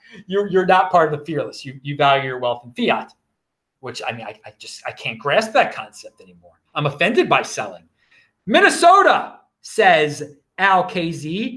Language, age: English, 40-59